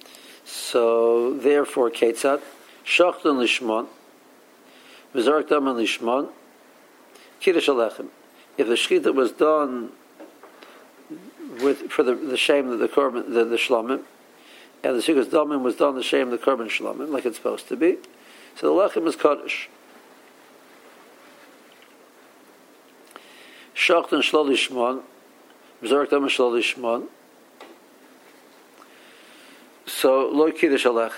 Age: 60-79